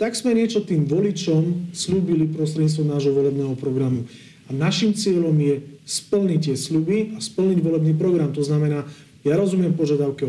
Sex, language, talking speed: male, Slovak, 150 wpm